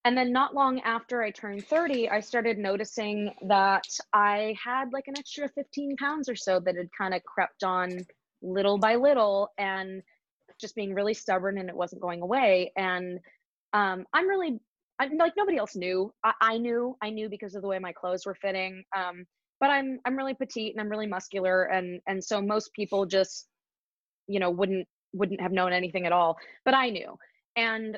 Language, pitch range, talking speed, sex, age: English, 185-230 Hz, 195 wpm, female, 20-39